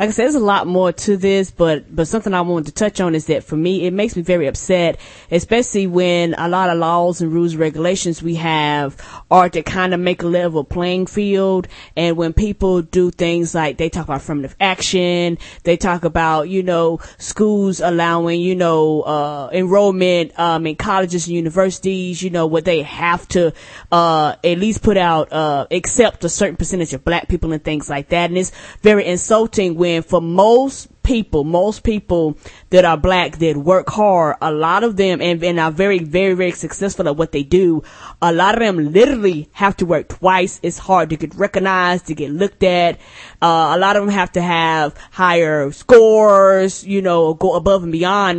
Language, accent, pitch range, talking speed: English, American, 165-195 Hz, 200 wpm